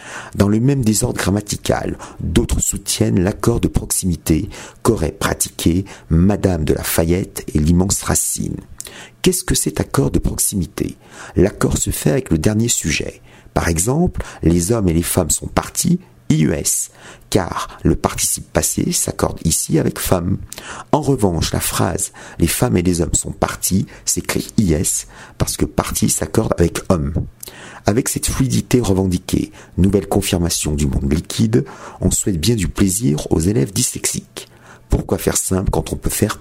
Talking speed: 165 wpm